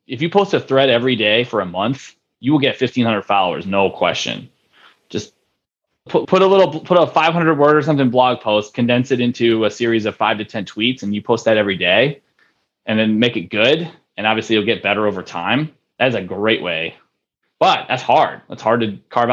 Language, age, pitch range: English, 20-39, 110-145 Hz